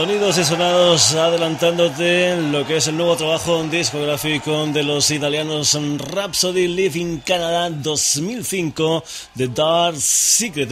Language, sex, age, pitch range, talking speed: Spanish, male, 20-39, 130-150 Hz, 125 wpm